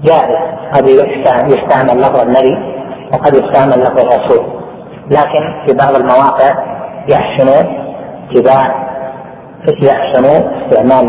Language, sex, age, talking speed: Arabic, female, 30-49, 90 wpm